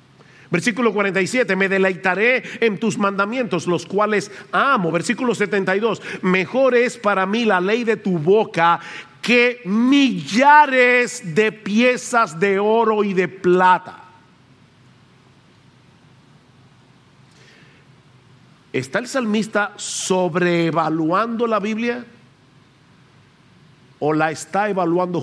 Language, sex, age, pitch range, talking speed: English, male, 50-69, 170-230 Hz, 95 wpm